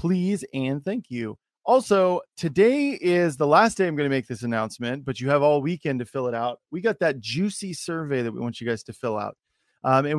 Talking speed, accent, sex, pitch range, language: 235 wpm, American, male, 125-165 Hz, English